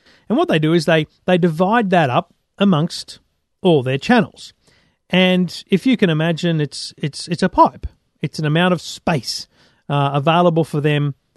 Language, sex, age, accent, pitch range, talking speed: English, male, 40-59, Australian, 145-190 Hz, 175 wpm